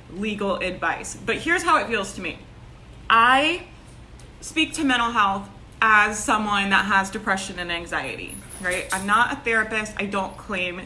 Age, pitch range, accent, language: 20-39, 190-230 Hz, American, English